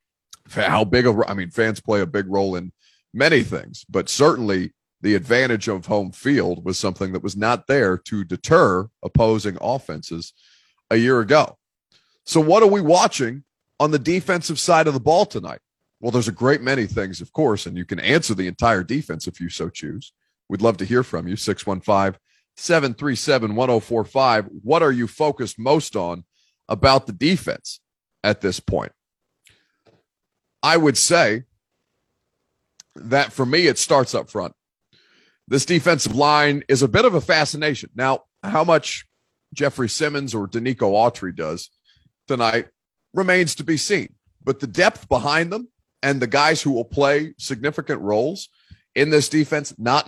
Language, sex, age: English, male, 30-49